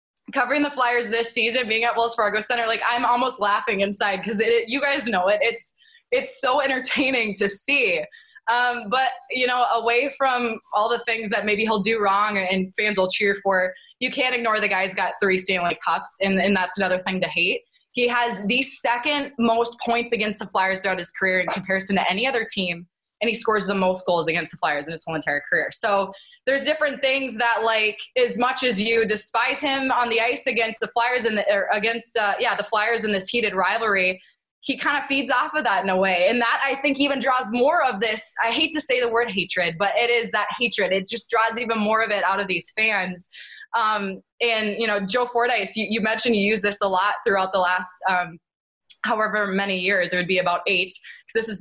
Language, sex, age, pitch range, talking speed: English, female, 20-39, 195-245 Hz, 230 wpm